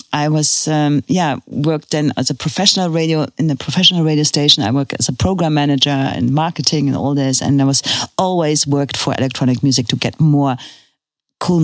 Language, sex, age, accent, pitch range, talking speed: English, female, 40-59, German, 140-170 Hz, 195 wpm